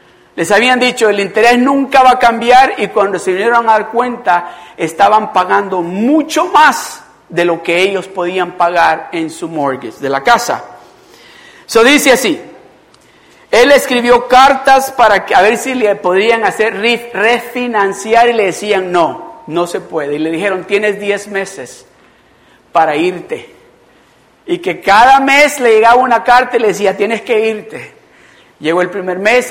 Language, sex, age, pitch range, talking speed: Spanish, male, 50-69, 190-240 Hz, 165 wpm